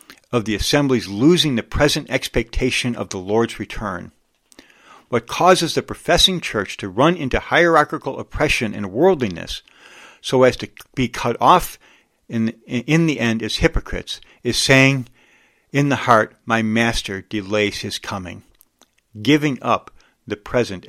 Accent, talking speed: American, 140 wpm